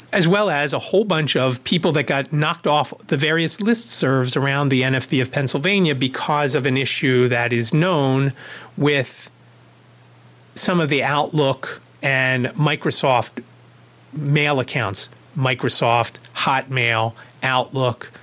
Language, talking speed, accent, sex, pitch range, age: English, 130 wpm, American, male, 125-160 Hz, 40-59